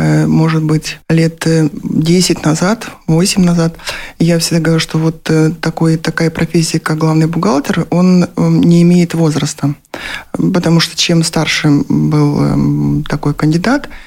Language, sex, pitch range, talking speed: Russian, male, 155-180 Hz, 125 wpm